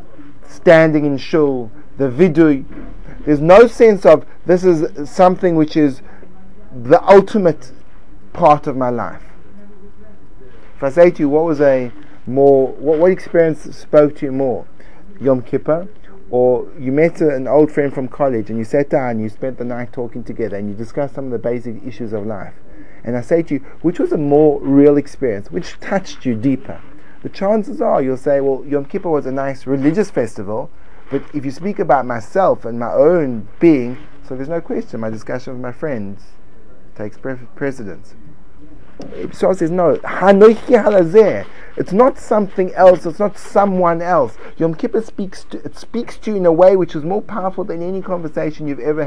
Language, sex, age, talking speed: English, male, 30-49, 180 wpm